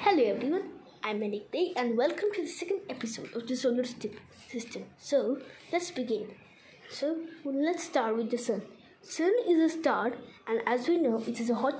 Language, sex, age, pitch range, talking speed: English, female, 20-39, 225-295 Hz, 190 wpm